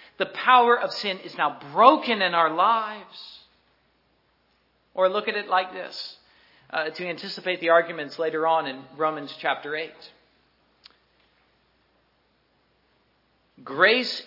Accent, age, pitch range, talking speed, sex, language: American, 50-69, 155-210 Hz, 120 wpm, male, English